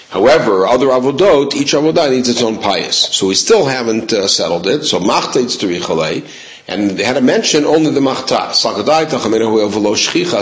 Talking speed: 160 wpm